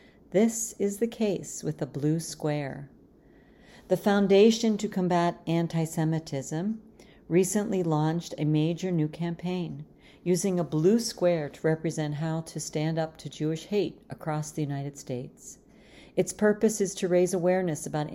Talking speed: 140 wpm